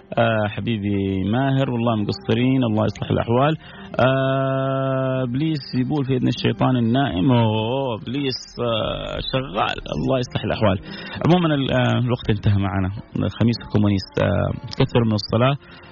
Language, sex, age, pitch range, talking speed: Arabic, male, 30-49, 100-130 Hz, 105 wpm